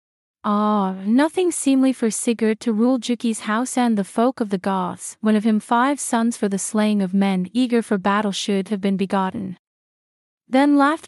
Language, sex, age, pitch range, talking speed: English, female, 30-49, 200-240 Hz, 185 wpm